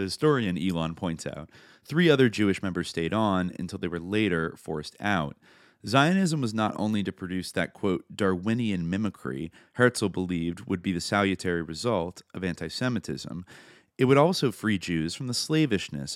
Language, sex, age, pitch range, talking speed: English, male, 30-49, 90-120 Hz, 160 wpm